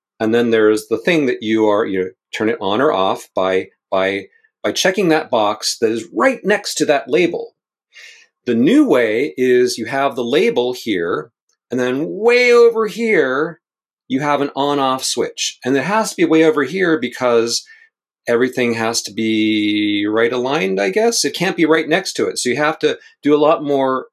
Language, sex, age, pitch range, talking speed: English, male, 40-59, 115-170 Hz, 200 wpm